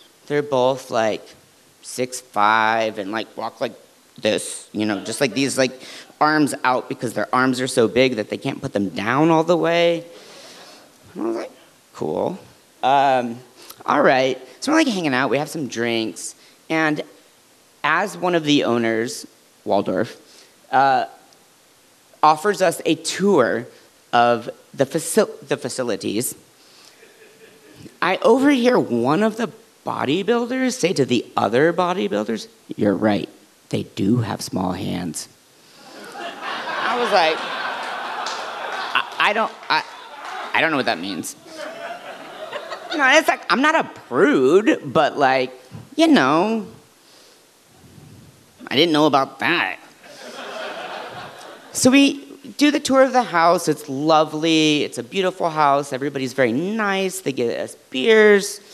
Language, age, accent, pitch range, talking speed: English, 40-59, American, 125-210 Hz, 140 wpm